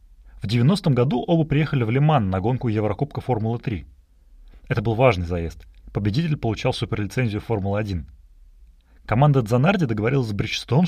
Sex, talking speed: male, 130 wpm